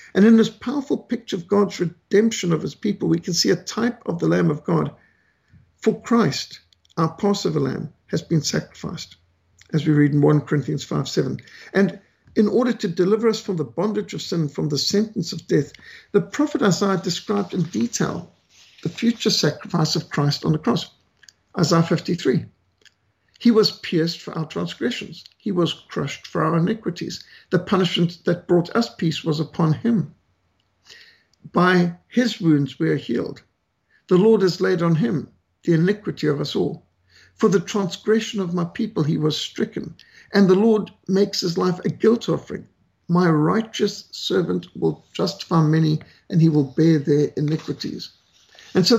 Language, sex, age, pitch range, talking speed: English, male, 50-69, 160-210 Hz, 170 wpm